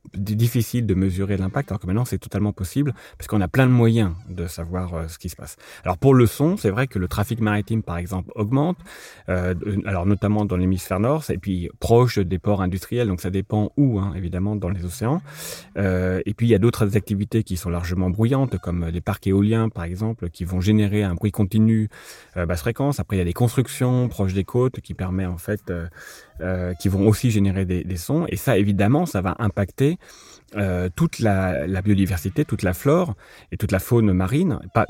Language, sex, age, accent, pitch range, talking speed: French, male, 30-49, French, 95-115 Hz, 215 wpm